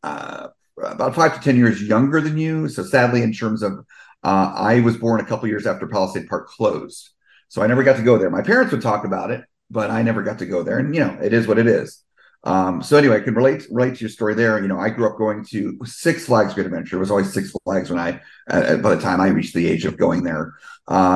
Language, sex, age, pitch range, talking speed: English, male, 40-59, 105-135 Hz, 270 wpm